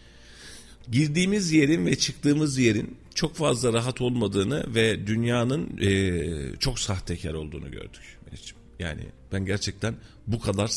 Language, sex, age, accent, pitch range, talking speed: Turkish, male, 40-59, native, 90-130 Hz, 115 wpm